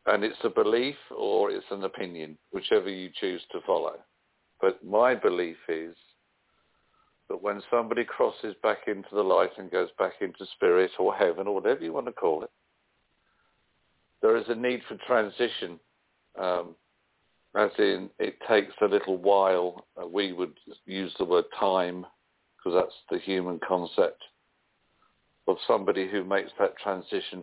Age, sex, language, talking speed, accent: 50-69, male, English, 155 wpm, British